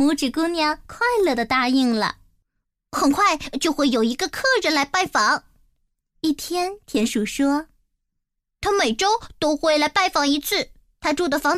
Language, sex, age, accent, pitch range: Chinese, male, 20-39, native, 265-360 Hz